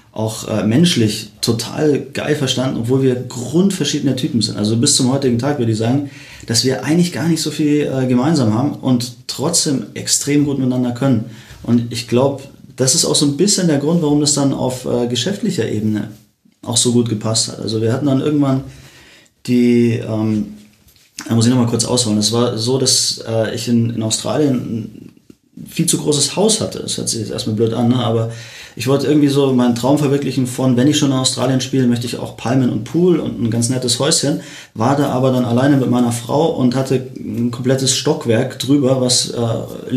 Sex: male